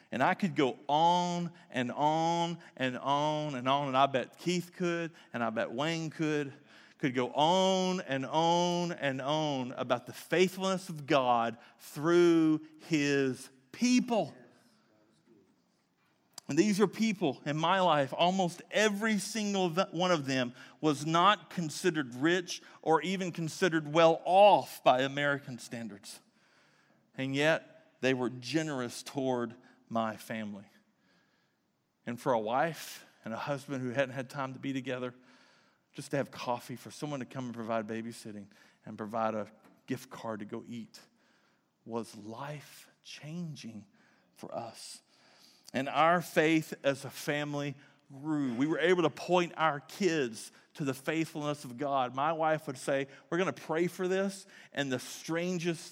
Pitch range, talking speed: 130-175 Hz, 150 wpm